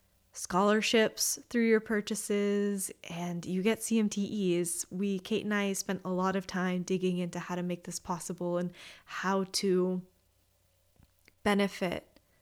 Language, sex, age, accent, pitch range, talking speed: English, female, 20-39, American, 185-215 Hz, 135 wpm